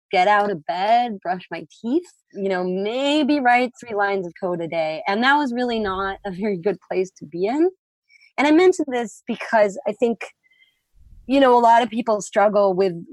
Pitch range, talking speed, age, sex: 190-245 Hz, 200 wpm, 20-39, female